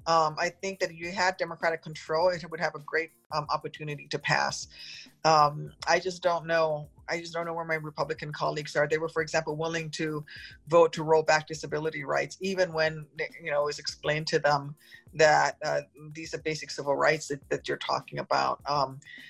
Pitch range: 155-170 Hz